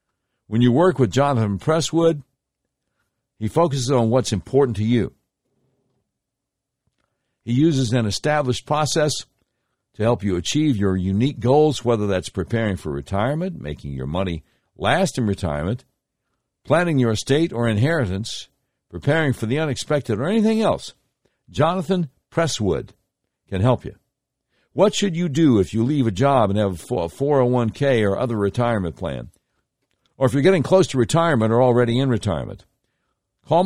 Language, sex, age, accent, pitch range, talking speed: English, male, 60-79, American, 100-140 Hz, 145 wpm